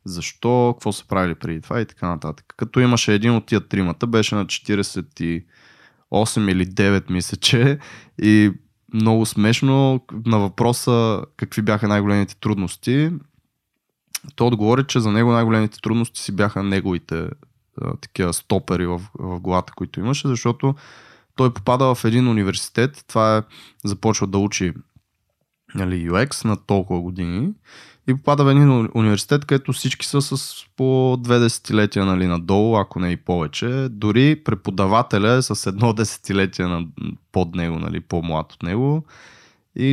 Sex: male